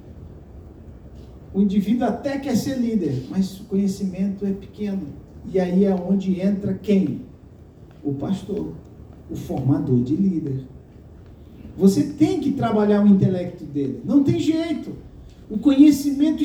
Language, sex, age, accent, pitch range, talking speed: Portuguese, male, 50-69, Brazilian, 190-280 Hz, 130 wpm